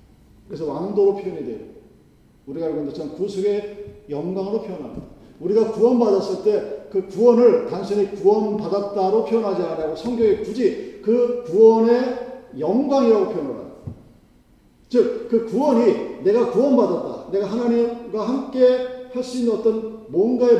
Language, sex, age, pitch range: Korean, male, 40-59, 180-240 Hz